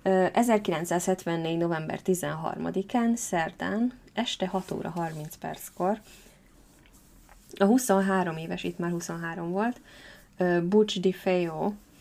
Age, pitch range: 20-39, 170-200 Hz